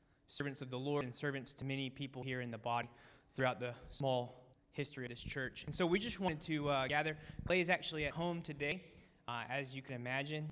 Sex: male